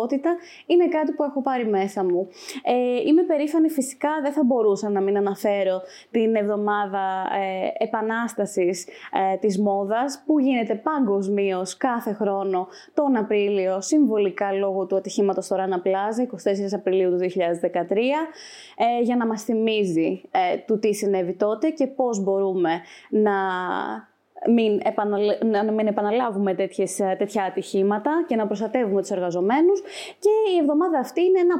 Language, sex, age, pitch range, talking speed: Greek, female, 20-39, 195-275 Hz, 130 wpm